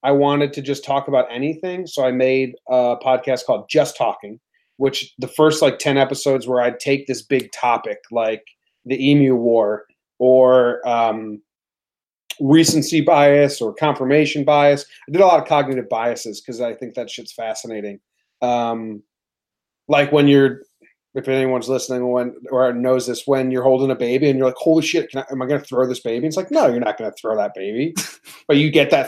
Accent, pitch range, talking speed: American, 120-145 Hz, 200 wpm